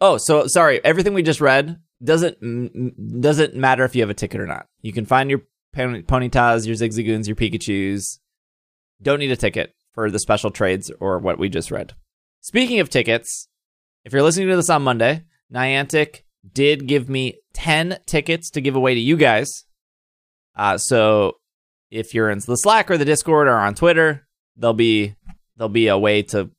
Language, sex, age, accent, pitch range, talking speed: English, male, 20-39, American, 105-155 Hz, 185 wpm